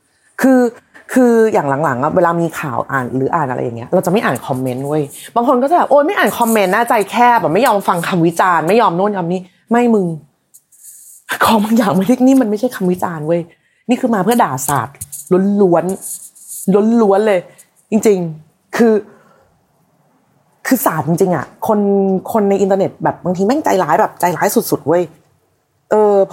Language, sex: Thai, female